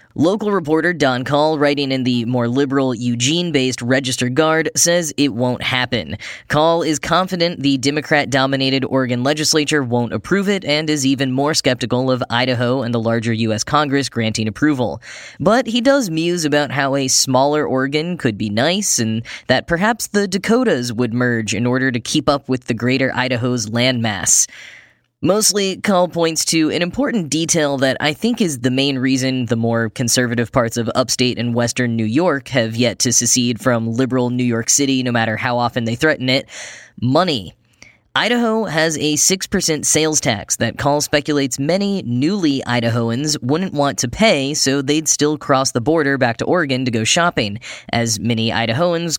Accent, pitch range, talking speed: American, 120-155 Hz, 175 wpm